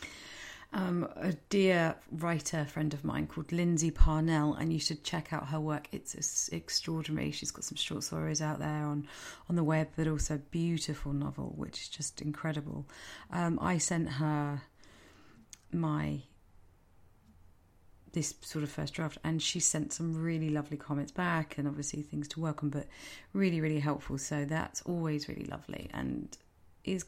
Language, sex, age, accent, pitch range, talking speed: English, female, 30-49, British, 145-165 Hz, 165 wpm